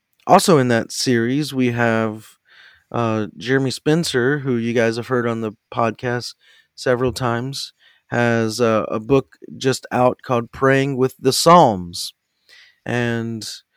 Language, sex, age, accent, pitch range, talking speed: English, male, 30-49, American, 115-135 Hz, 135 wpm